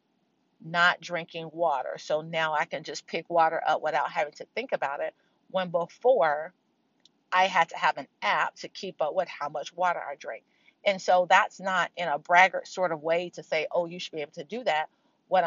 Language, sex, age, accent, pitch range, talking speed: English, female, 40-59, American, 170-220 Hz, 215 wpm